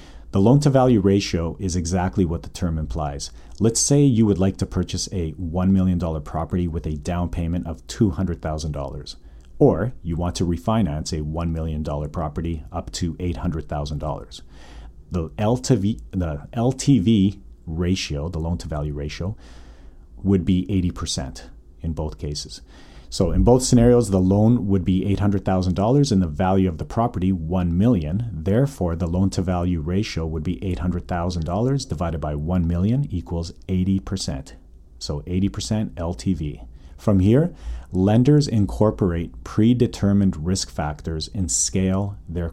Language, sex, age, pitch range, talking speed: English, male, 40-59, 75-100 Hz, 130 wpm